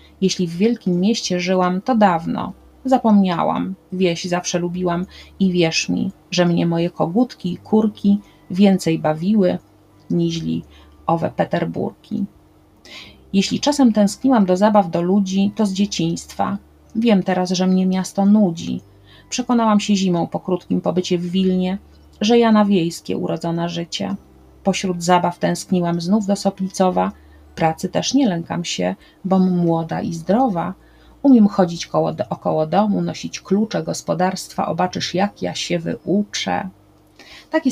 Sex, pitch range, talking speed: female, 165-200 Hz, 130 wpm